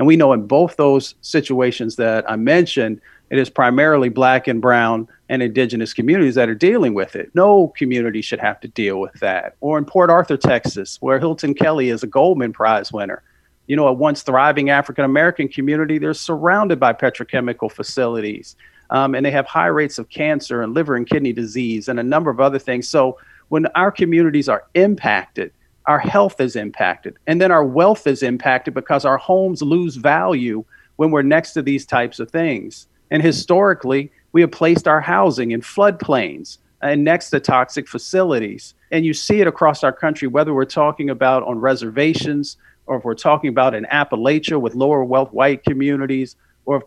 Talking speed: 185 wpm